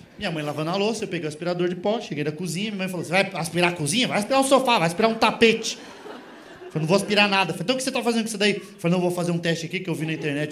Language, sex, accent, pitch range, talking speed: Portuguese, male, Brazilian, 170-270 Hz, 325 wpm